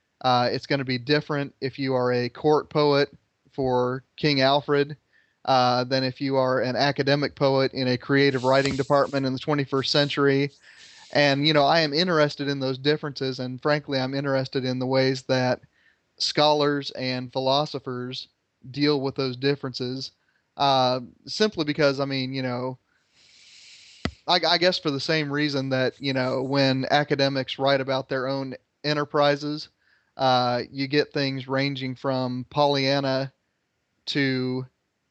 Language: English